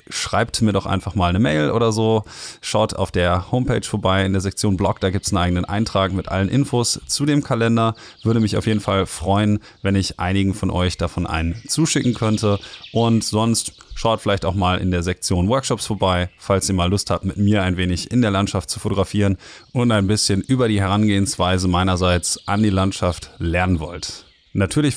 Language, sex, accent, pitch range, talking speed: German, male, German, 90-110 Hz, 200 wpm